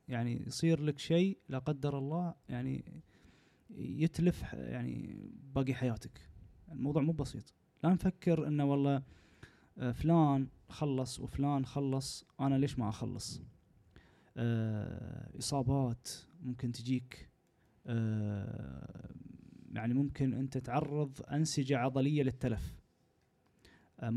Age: 20-39